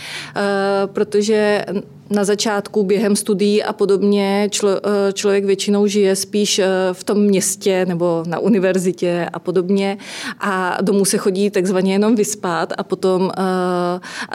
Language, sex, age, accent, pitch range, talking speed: Czech, female, 30-49, native, 180-200 Hz, 130 wpm